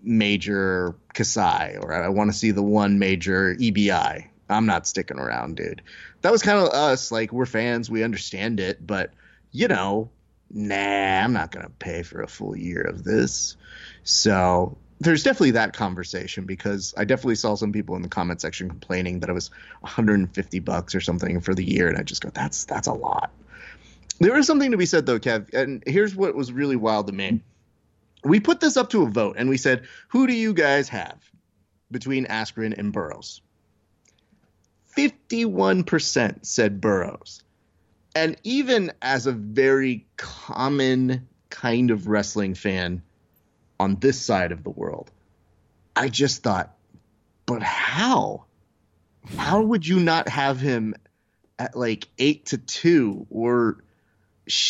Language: English